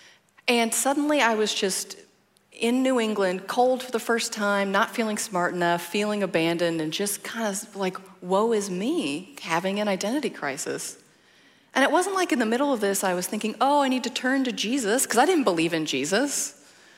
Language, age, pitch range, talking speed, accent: English, 30-49, 170-235 Hz, 200 wpm, American